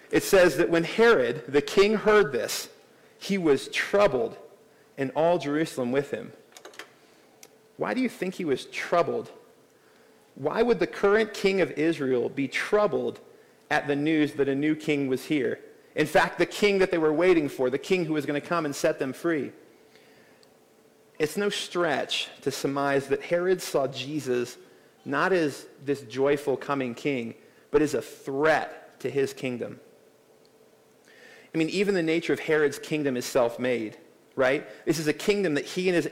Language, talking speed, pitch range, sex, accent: English, 170 wpm, 140-185 Hz, male, American